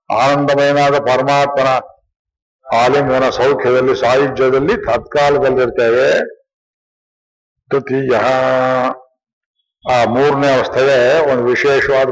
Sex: male